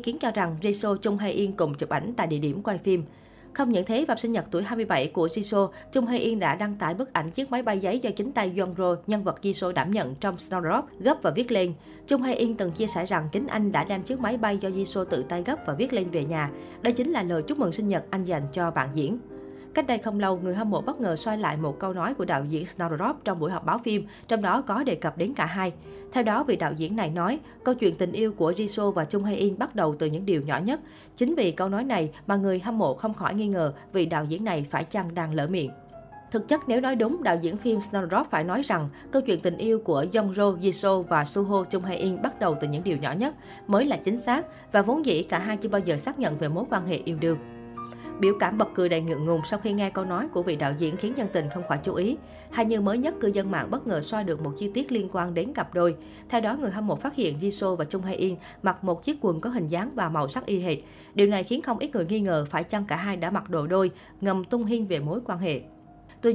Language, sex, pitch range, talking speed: Vietnamese, female, 170-225 Hz, 275 wpm